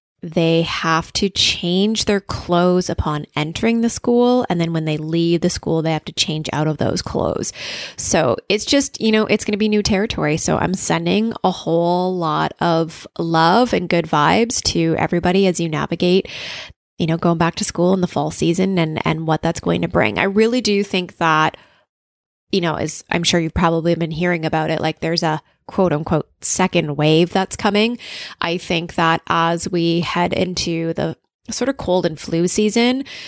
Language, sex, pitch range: English, female, 160-200 Hz